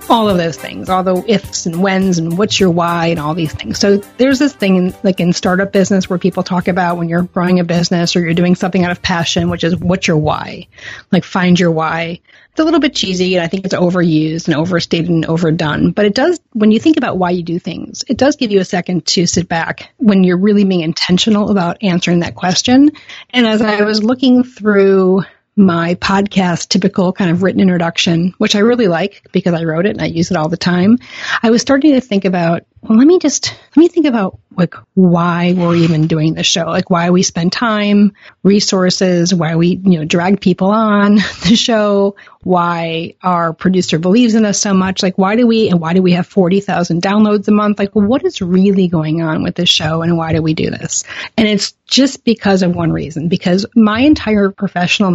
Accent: American